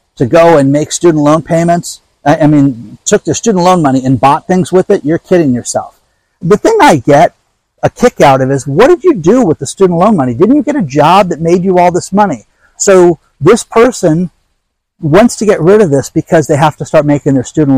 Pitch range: 135-195 Hz